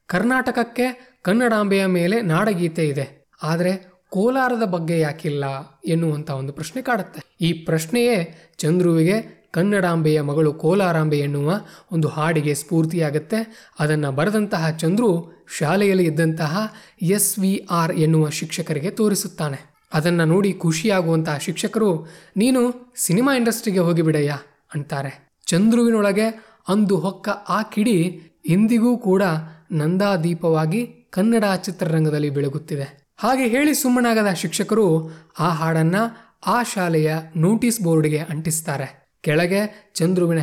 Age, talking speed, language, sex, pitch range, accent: 20-39, 100 wpm, Kannada, male, 160-205 Hz, native